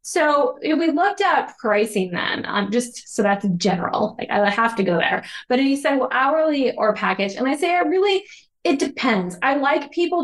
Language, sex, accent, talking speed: English, female, American, 215 wpm